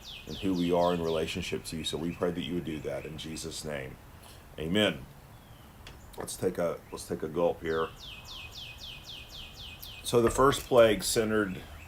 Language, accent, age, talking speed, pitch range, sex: English, American, 40-59, 165 wpm, 85-100 Hz, male